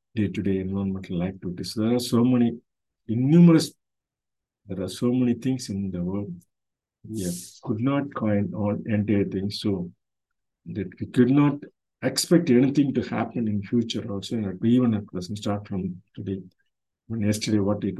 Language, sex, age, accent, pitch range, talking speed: Tamil, male, 50-69, native, 100-120 Hz, 150 wpm